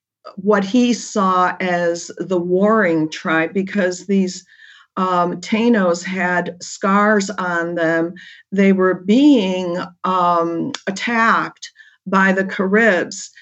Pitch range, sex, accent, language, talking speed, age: 180-215 Hz, female, American, English, 105 wpm, 50-69